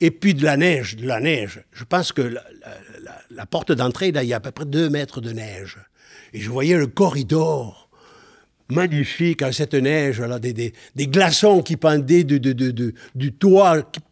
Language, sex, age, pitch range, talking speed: French, male, 60-79, 120-160 Hz, 215 wpm